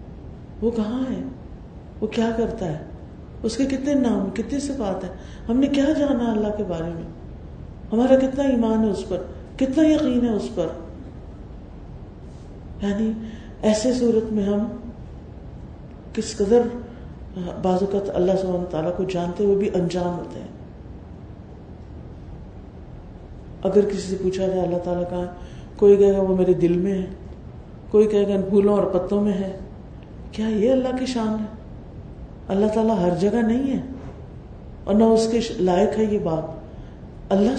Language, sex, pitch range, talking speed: Urdu, female, 190-235 Hz, 155 wpm